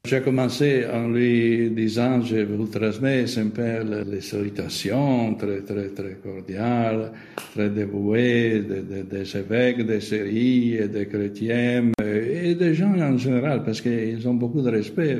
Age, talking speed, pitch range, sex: 60-79, 140 wpm, 105-120 Hz, male